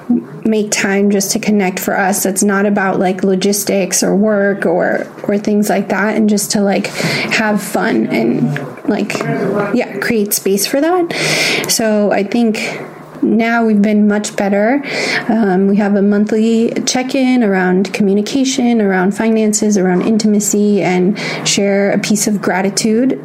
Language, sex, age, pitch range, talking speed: English, female, 20-39, 200-225 Hz, 150 wpm